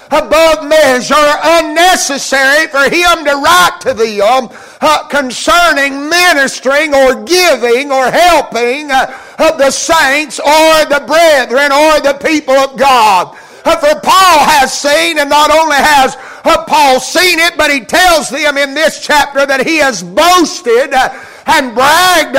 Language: English